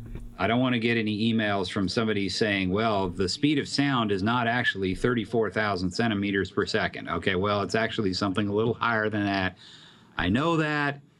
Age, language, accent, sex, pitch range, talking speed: 40-59, English, American, male, 95-115 Hz, 190 wpm